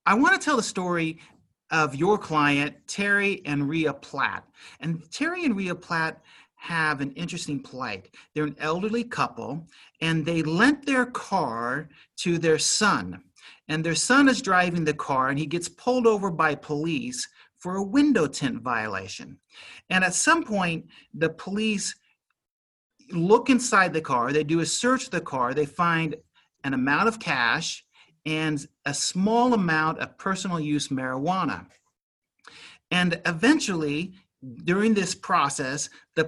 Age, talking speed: 40-59, 150 wpm